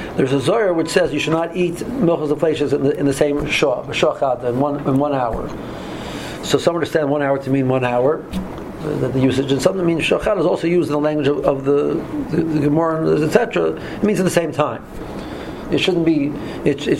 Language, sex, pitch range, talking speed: English, male, 140-160 Hz, 235 wpm